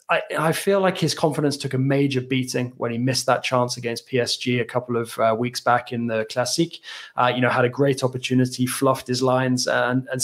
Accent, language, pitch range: British, English, 125-145 Hz